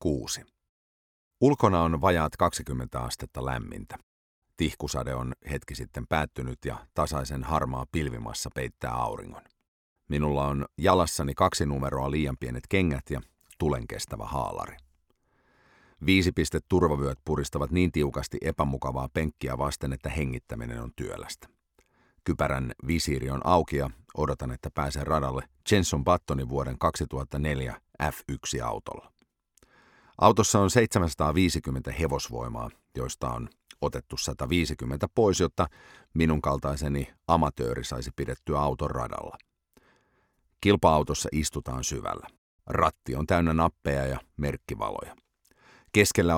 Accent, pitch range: Finnish, 65-85 Hz